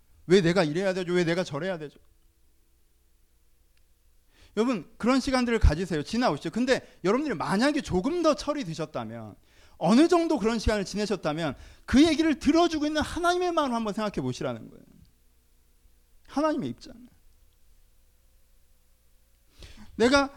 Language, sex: Korean, male